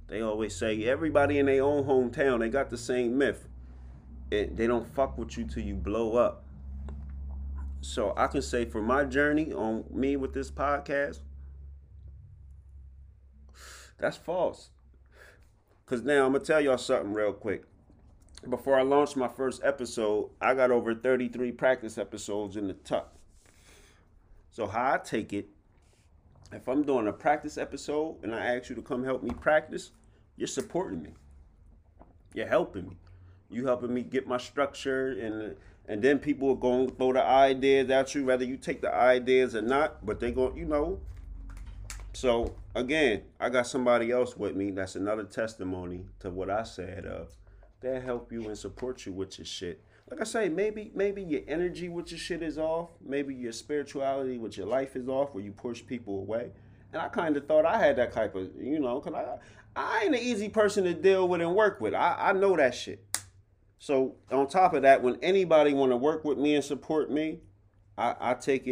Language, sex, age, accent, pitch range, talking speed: English, male, 30-49, American, 95-135 Hz, 190 wpm